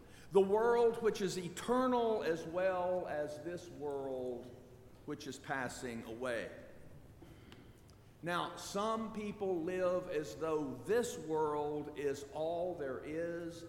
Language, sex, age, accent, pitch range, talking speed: English, male, 50-69, American, 135-195 Hz, 115 wpm